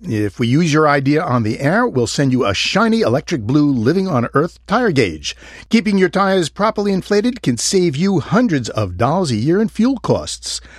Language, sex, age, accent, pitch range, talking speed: English, male, 50-69, American, 105-165 Hz, 190 wpm